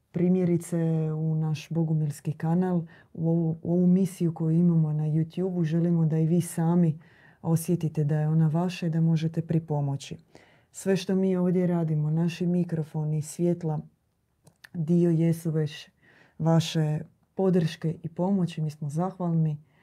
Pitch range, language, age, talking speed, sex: 155-175 Hz, Croatian, 30-49, 140 wpm, female